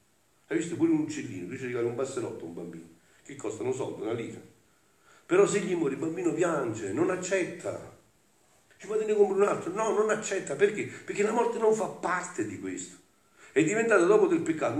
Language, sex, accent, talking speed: Italian, male, native, 200 wpm